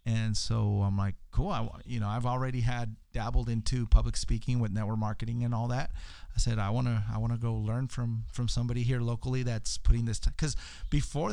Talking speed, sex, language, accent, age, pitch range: 210 wpm, male, English, American, 30-49, 110-130 Hz